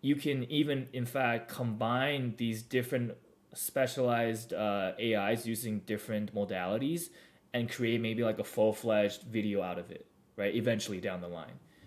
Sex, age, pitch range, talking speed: male, 20-39, 105-125 Hz, 145 wpm